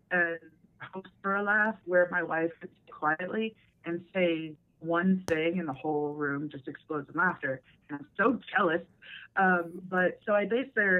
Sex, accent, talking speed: female, American, 170 wpm